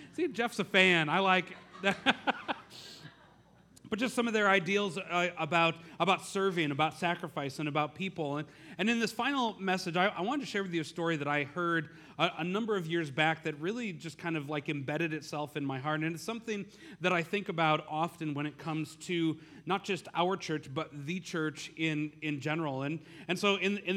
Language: English